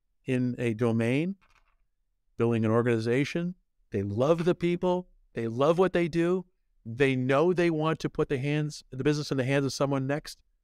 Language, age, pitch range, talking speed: English, 50-69, 120-155 Hz, 175 wpm